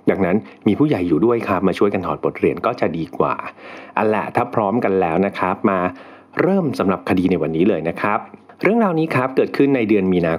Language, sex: Thai, male